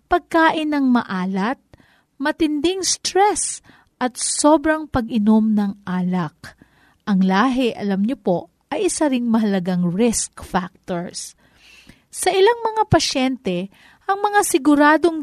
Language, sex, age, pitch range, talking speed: Filipino, female, 40-59, 210-290 Hz, 110 wpm